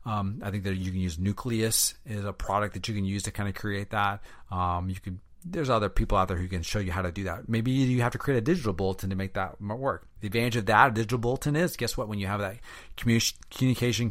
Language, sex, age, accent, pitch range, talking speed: English, male, 30-49, American, 95-120 Hz, 270 wpm